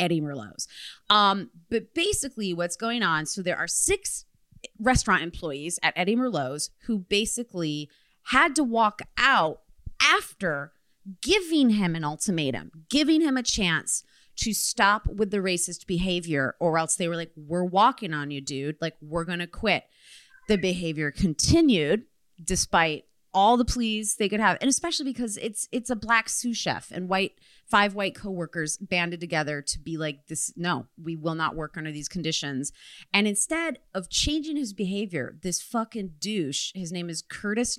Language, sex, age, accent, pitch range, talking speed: English, female, 30-49, American, 160-215 Hz, 165 wpm